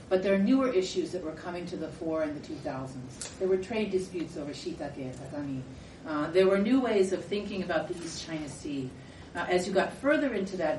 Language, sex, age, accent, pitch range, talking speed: English, female, 40-59, American, 140-180 Hz, 220 wpm